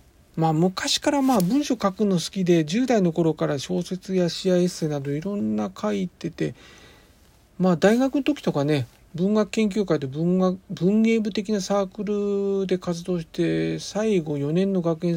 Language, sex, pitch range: Japanese, male, 145-205 Hz